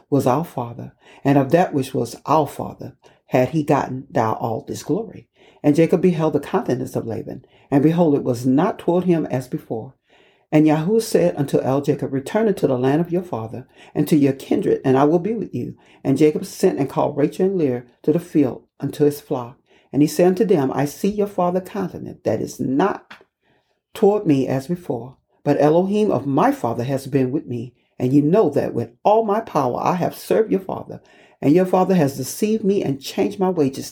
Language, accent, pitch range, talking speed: English, American, 130-180 Hz, 210 wpm